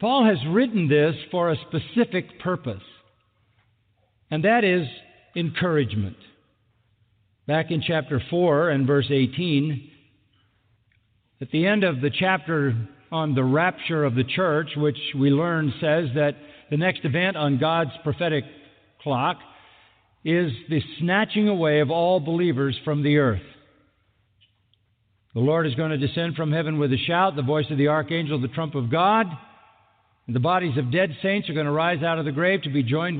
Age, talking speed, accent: 50-69, 160 wpm, American